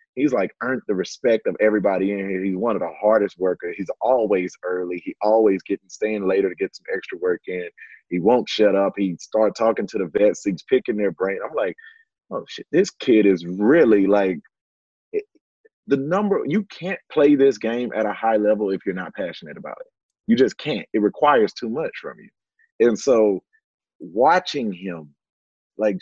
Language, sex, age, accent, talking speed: English, male, 30-49, American, 195 wpm